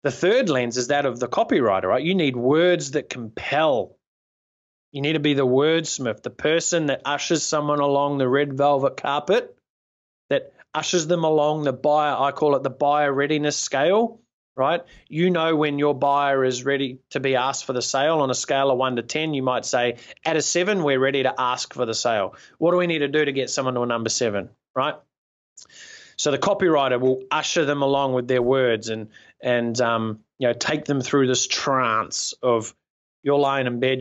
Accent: Australian